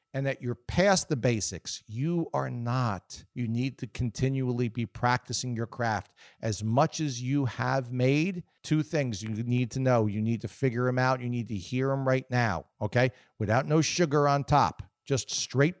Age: 50-69